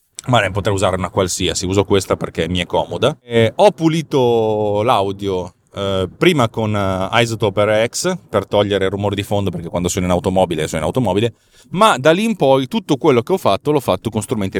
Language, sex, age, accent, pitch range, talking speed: Italian, male, 30-49, native, 100-135 Hz, 190 wpm